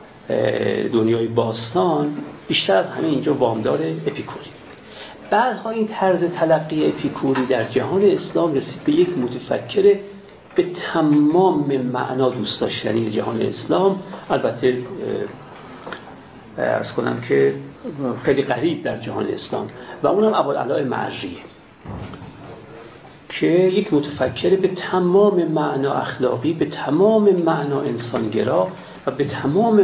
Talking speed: 110 wpm